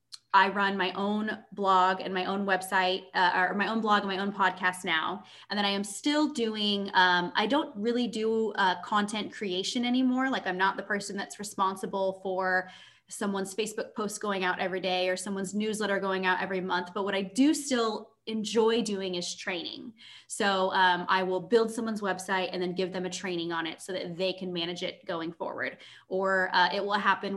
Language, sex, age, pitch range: English, female, 20-39, 185-215 Hz